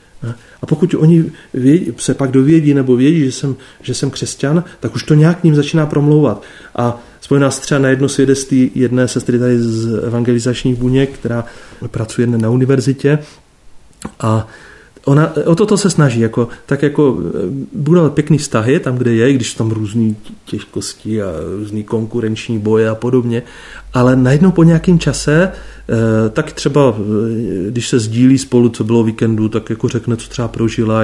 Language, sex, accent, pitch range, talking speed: Czech, male, native, 115-155 Hz, 160 wpm